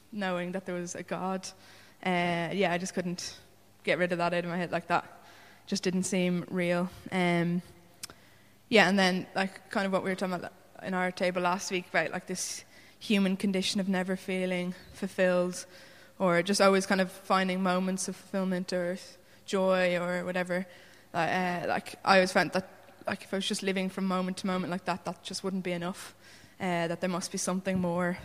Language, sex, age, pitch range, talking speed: English, female, 20-39, 180-190 Hz, 200 wpm